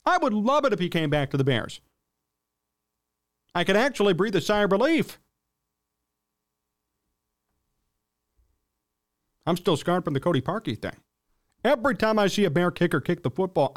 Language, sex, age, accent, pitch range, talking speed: English, male, 40-59, American, 120-190 Hz, 160 wpm